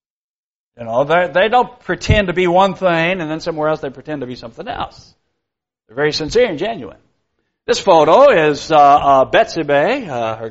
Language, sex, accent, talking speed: English, male, American, 195 wpm